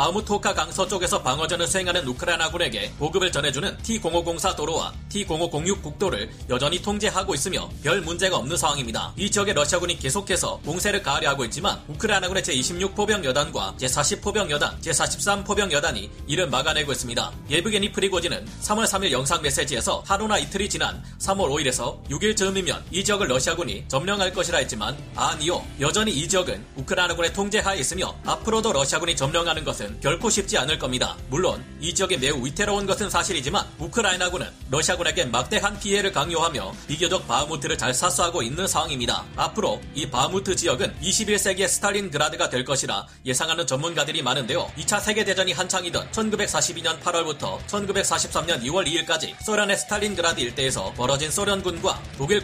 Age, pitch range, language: 40-59, 150-200 Hz, Korean